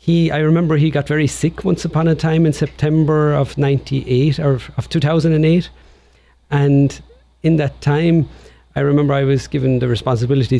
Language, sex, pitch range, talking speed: English, male, 120-145 Hz, 165 wpm